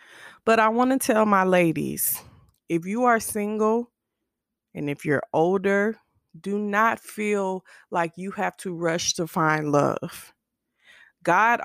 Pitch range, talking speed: 160-200 Hz, 140 wpm